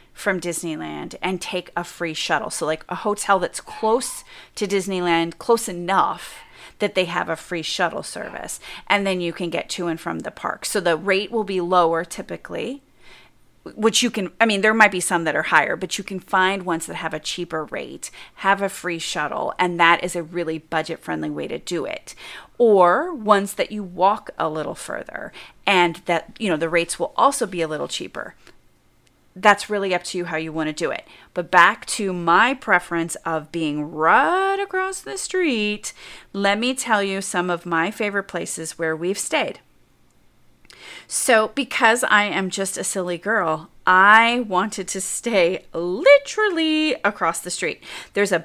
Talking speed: 185 wpm